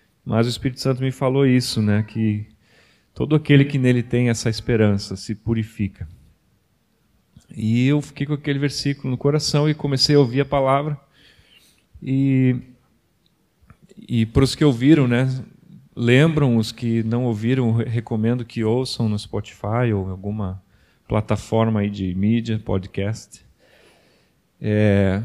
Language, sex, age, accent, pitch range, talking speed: Portuguese, male, 40-59, Brazilian, 110-130 Hz, 135 wpm